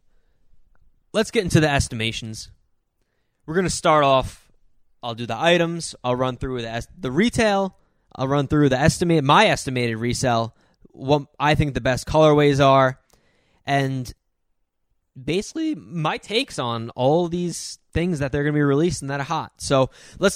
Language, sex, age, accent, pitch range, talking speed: English, male, 20-39, American, 125-160 Hz, 160 wpm